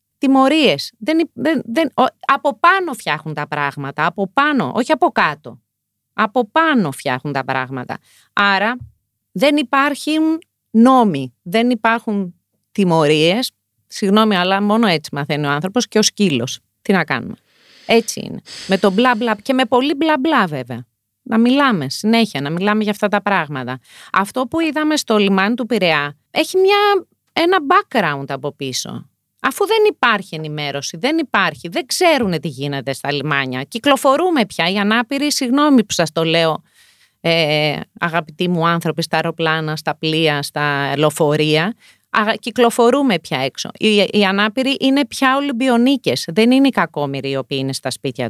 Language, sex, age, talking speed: Greek, female, 30-49, 150 wpm